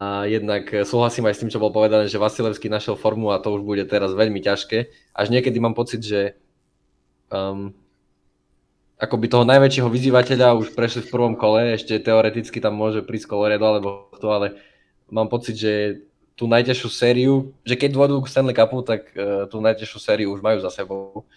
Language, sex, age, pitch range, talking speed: Slovak, male, 20-39, 100-120 Hz, 185 wpm